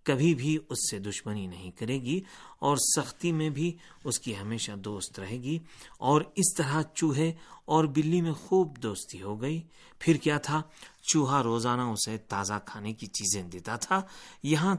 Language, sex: Urdu, male